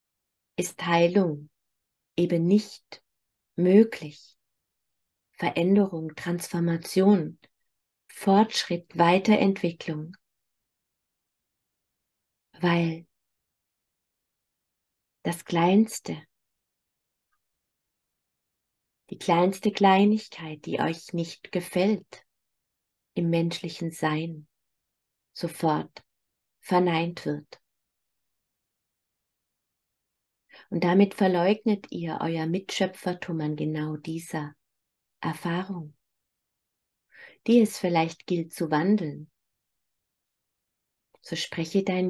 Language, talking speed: German, 65 wpm